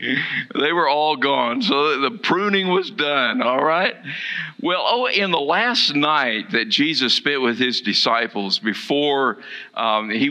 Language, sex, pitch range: English, male, 115-185 Hz